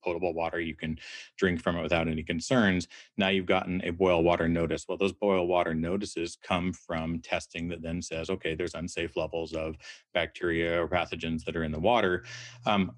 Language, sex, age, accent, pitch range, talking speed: English, male, 30-49, American, 85-95 Hz, 190 wpm